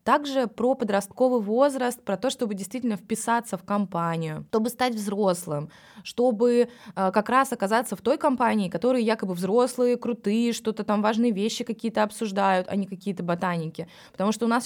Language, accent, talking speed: Russian, native, 165 wpm